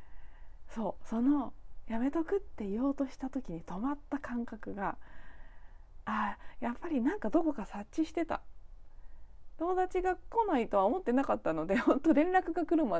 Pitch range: 205-290 Hz